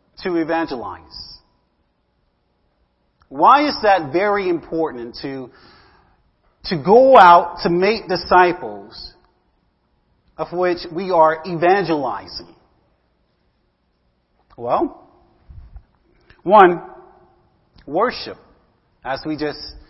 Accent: American